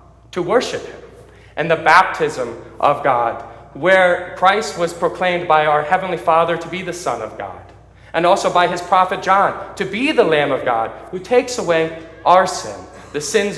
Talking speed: 180 wpm